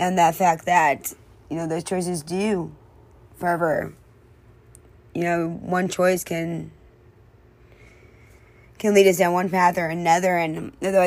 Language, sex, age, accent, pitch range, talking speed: English, female, 20-39, American, 160-175 Hz, 135 wpm